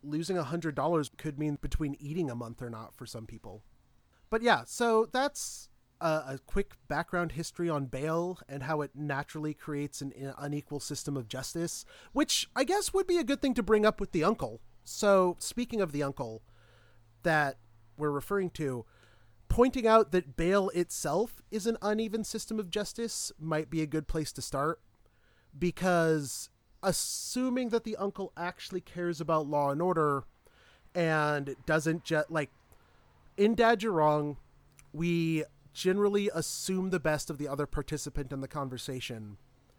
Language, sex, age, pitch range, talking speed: English, male, 30-49, 135-185 Hz, 160 wpm